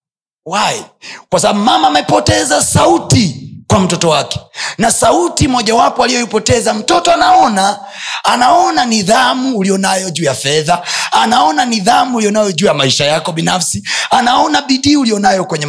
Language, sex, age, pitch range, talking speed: Swahili, male, 30-49, 160-240 Hz, 130 wpm